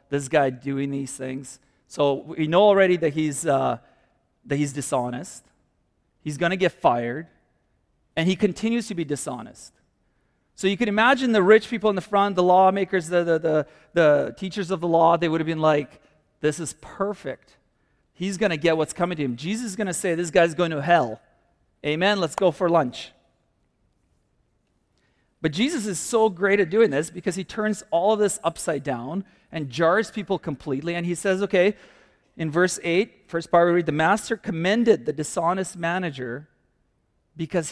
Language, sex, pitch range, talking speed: English, male, 145-190 Hz, 185 wpm